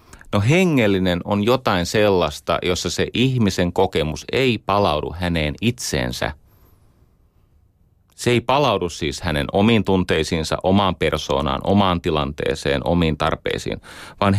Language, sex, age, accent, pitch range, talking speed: Finnish, male, 30-49, native, 85-115 Hz, 115 wpm